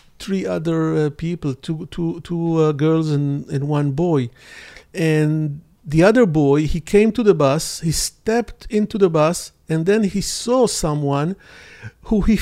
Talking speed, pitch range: 155 wpm, 140-185 Hz